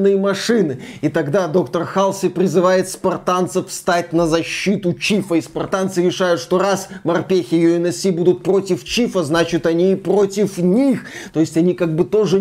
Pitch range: 195-250 Hz